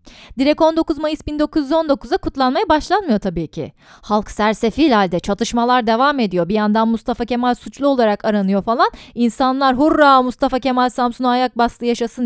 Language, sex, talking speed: Turkish, female, 145 wpm